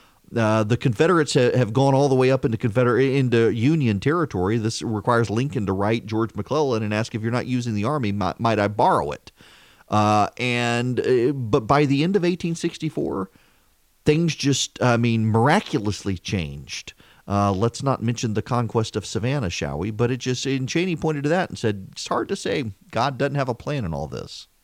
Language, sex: English, male